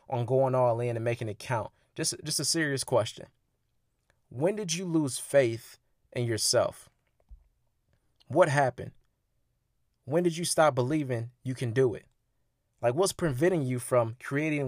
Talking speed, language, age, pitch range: 150 wpm, English, 20-39, 125-160 Hz